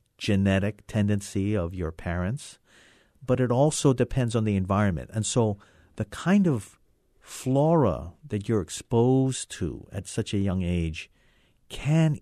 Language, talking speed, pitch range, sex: English, 135 wpm, 95-125 Hz, male